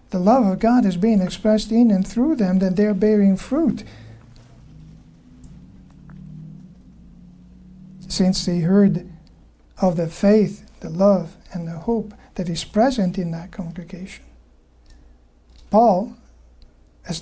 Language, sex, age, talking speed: English, male, 60-79, 120 wpm